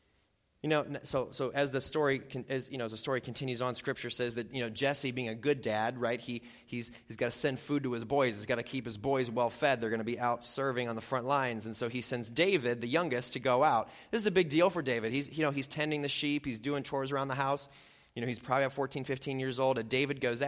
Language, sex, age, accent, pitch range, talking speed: English, male, 30-49, American, 115-140 Hz, 280 wpm